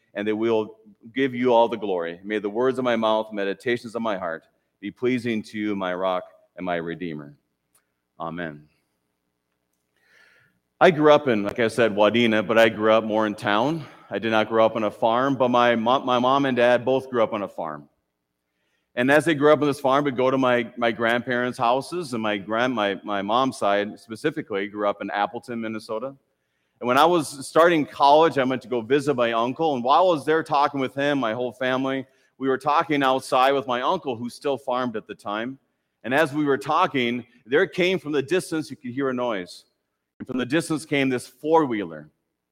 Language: English